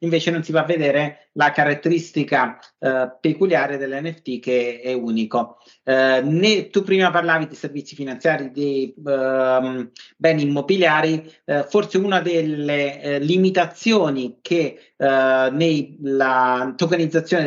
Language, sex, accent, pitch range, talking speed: Italian, male, native, 140-170 Hz, 125 wpm